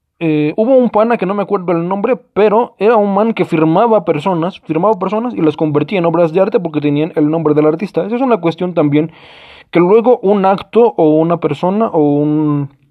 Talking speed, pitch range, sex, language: 215 wpm, 150-195 Hz, male, Spanish